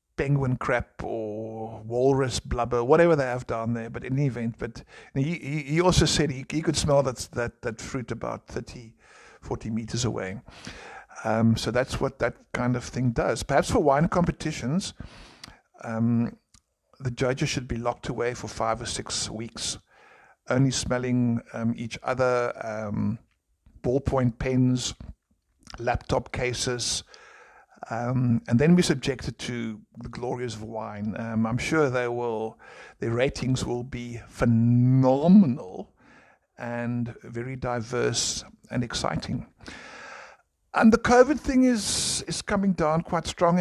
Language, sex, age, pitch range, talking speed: English, male, 60-79, 115-140 Hz, 140 wpm